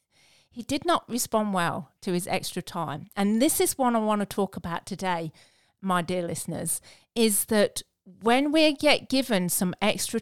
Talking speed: 175 wpm